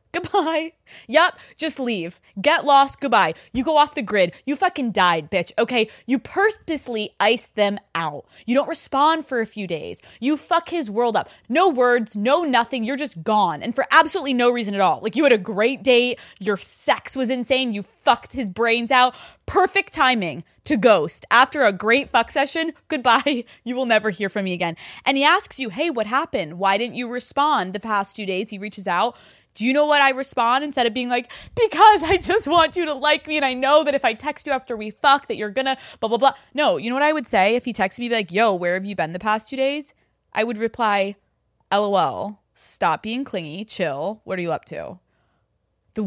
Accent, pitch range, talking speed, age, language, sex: American, 210-285 Hz, 220 wpm, 20-39, English, female